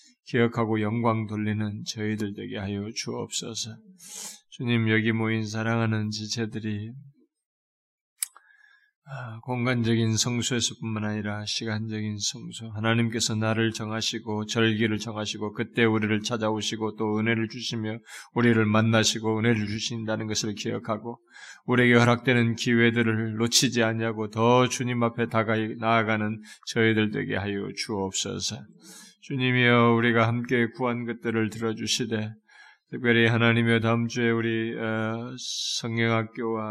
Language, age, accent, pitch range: Korean, 20-39, native, 110-120 Hz